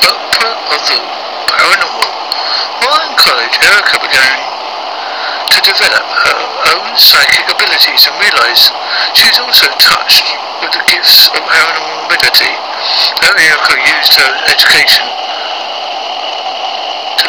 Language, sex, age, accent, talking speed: English, male, 60-79, British, 115 wpm